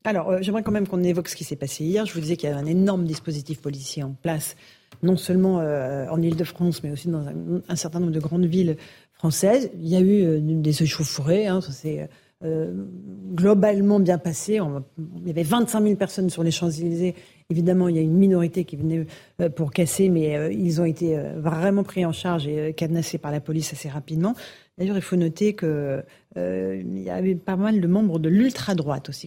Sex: female